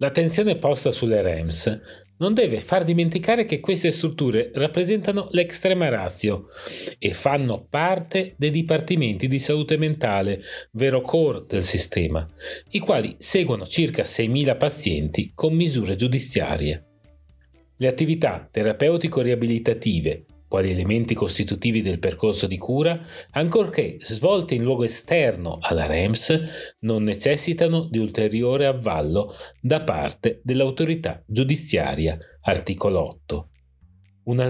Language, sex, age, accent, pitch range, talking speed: Italian, male, 40-59, native, 100-160 Hz, 110 wpm